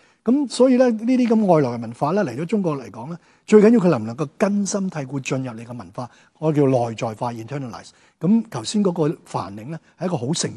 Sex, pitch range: male, 130-185 Hz